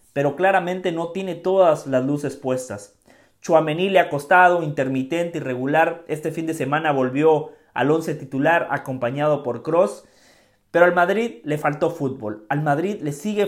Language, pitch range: English, 135-190 Hz